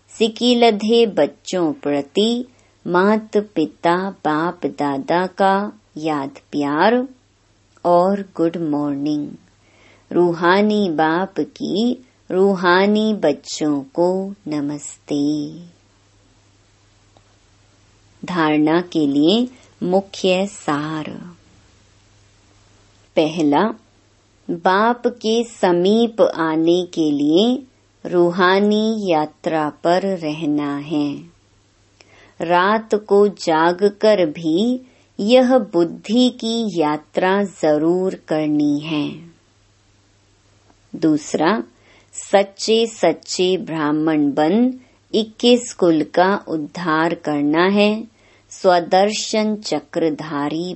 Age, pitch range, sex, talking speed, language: 30-49, 145-195 Hz, male, 75 wpm, Hindi